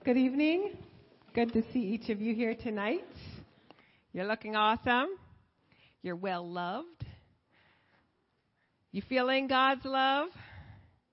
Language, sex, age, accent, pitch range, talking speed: English, female, 40-59, American, 205-250 Hz, 100 wpm